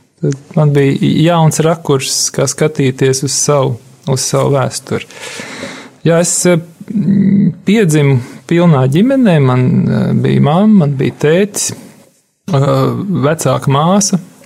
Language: English